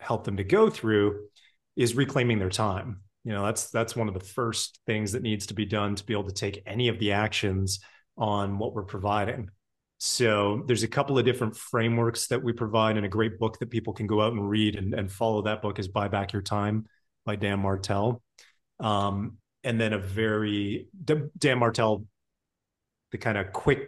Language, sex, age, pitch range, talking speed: English, male, 30-49, 100-115 Hz, 205 wpm